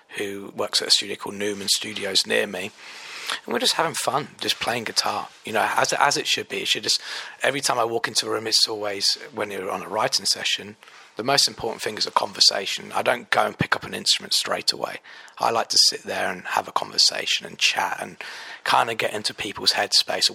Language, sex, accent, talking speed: English, male, British, 230 wpm